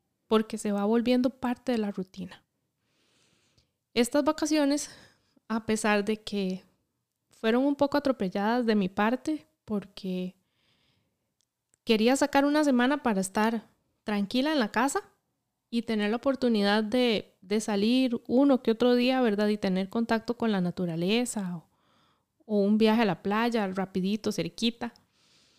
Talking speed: 140 wpm